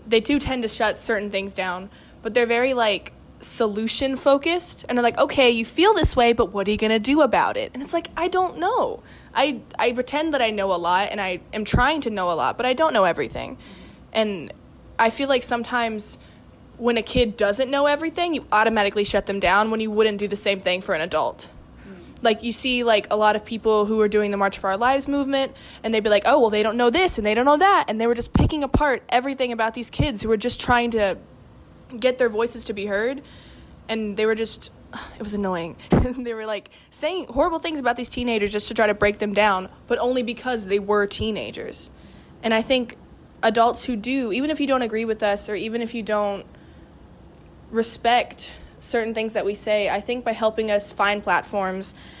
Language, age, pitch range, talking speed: English, 20-39, 210-255 Hz, 225 wpm